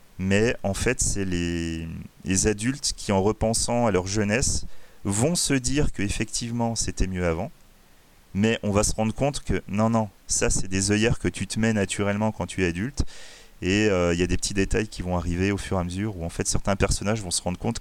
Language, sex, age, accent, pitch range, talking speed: French, male, 30-49, French, 90-115 Hz, 225 wpm